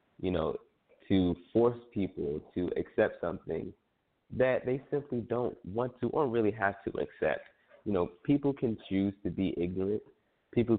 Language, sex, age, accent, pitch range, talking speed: English, male, 20-39, American, 90-105 Hz, 155 wpm